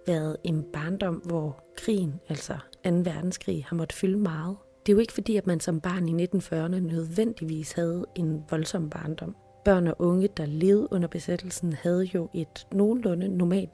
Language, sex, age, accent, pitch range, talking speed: Danish, female, 30-49, native, 155-185 Hz, 175 wpm